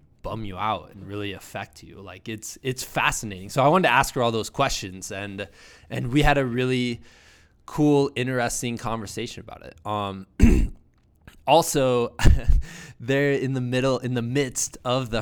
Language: English